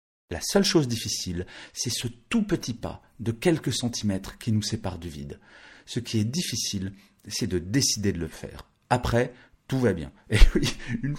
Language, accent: French, French